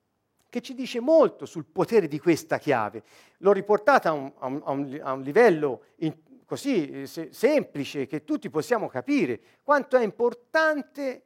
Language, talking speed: Italian, 130 wpm